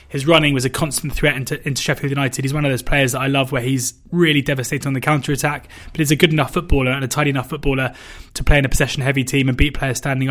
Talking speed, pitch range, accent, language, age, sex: 260 wpm, 130-150 Hz, British, English, 20-39, male